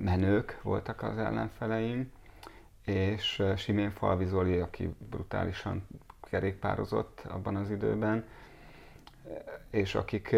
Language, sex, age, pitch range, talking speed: Hungarian, male, 30-49, 85-100 Hz, 85 wpm